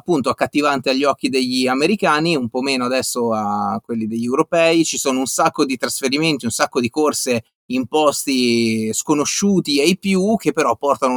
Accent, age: native, 30-49